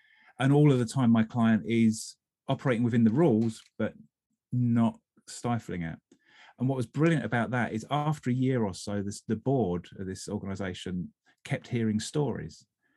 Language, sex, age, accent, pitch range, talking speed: English, male, 30-49, British, 105-135 Hz, 170 wpm